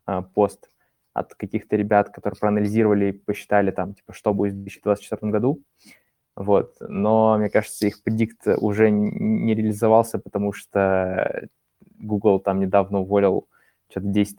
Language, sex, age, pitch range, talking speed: Russian, male, 20-39, 100-110 Hz, 135 wpm